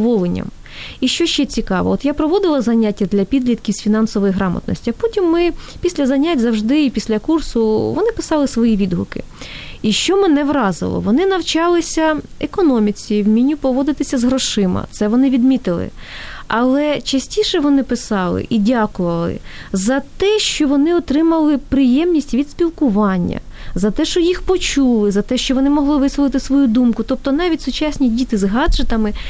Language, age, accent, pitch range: Ukrainian, 20-39, native, 230-295 Hz